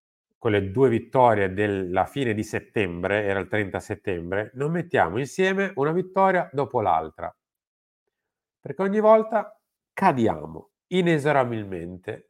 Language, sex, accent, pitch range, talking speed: Italian, male, native, 100-145 Hz, 115 wpm